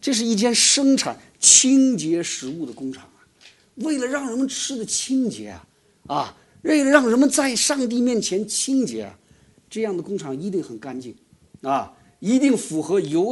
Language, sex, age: Chinese, male, 50-69